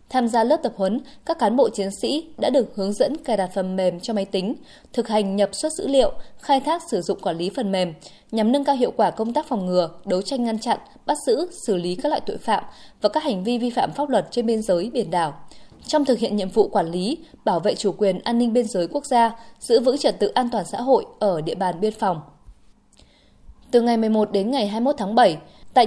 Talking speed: 250 wpm